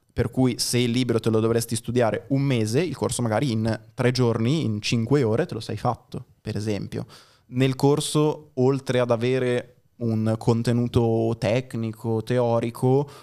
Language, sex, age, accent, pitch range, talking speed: Italian, male, 20-39, native, 110-125 Hz, 160 wpm